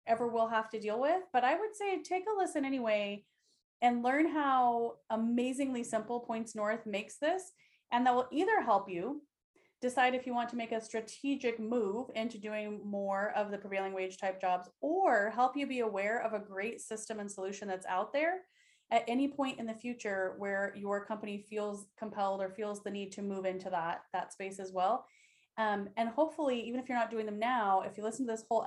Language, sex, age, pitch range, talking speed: English, female, 30-49, 195-240 Hz, 210 wpm